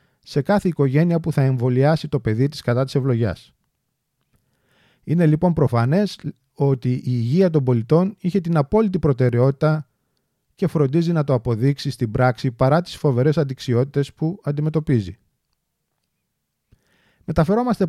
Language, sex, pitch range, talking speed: Greek, male, 125-160 Hz, 125 wpm